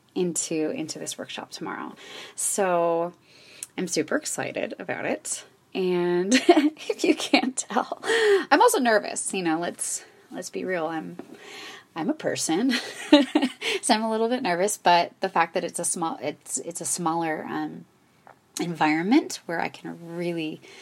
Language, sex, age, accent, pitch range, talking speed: English, female, 20-39, American, 165-260 Hz, 150 wpm